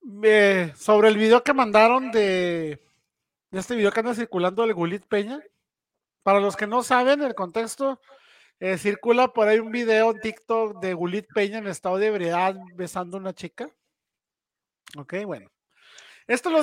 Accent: Mexican